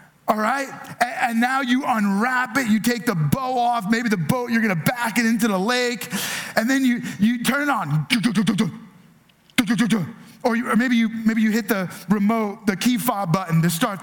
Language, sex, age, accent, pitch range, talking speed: English, male, 30-49, American, 200-260 Hz, 195 wpm